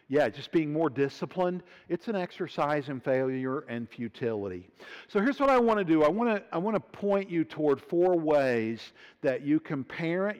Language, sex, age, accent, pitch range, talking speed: English, male, 50-69, American, 140-205 Hz, 195 wpm